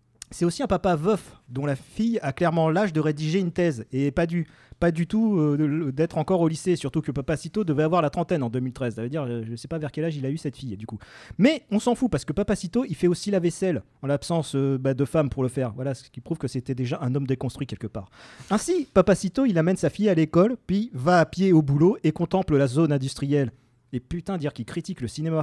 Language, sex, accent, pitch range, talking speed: French, male, French, 135-180 Hz, 265 wpm